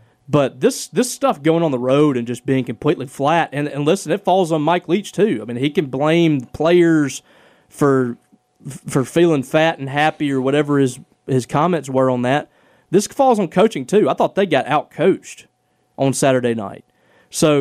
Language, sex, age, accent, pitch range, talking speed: English, male, 30-49, American, 125-160 Hz, 190 wpm